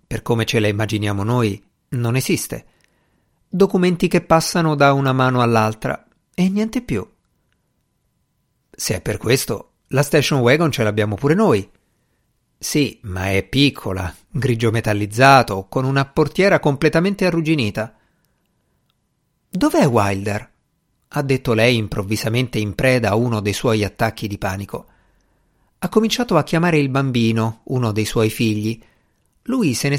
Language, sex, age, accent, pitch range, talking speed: Italian, male, 50-69, native, 110-160 Hz, 135 wpm